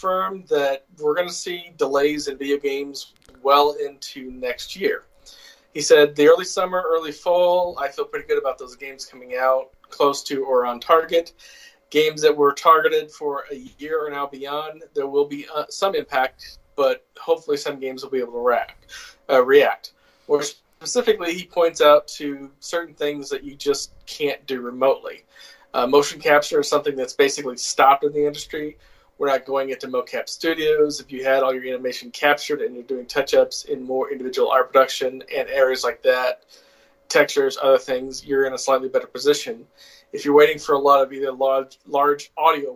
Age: 40-59